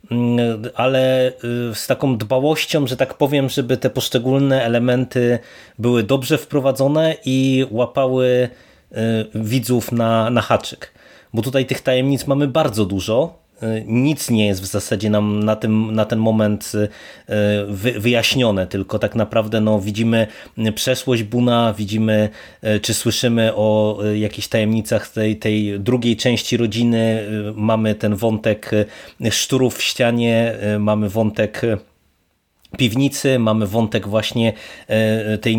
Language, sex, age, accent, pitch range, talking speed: Polish, male, 30-49, native, 110-125 Hz, 120 wpm